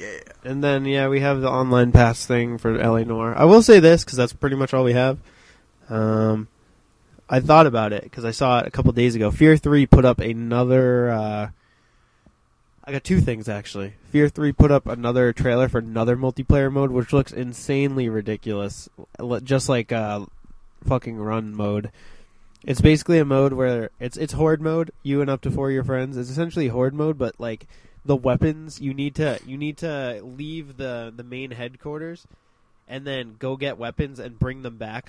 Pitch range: 115-140 Hz